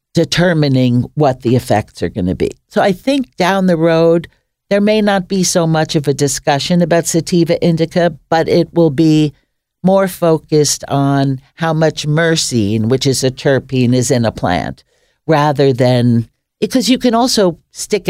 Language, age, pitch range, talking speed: English, 60-79, 135-180 Hz, 170 wpm